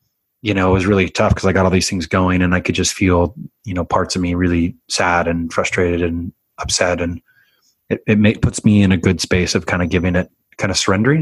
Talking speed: 250 wpm